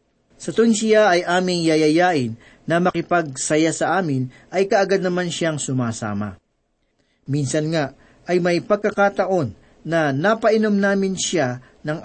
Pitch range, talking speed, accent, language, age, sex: 135-190 Hz, 120 wpm, native, Filipino, 40-59, male